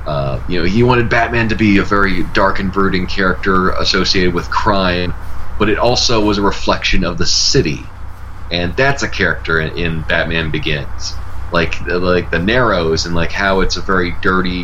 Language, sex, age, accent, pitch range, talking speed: English, male, 30-49, American, 85-100 Hz, 180 wpm